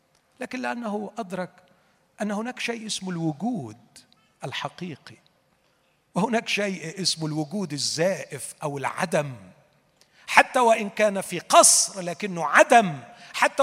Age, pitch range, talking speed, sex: 40-59, 140-205 Hz, 105 wpm, male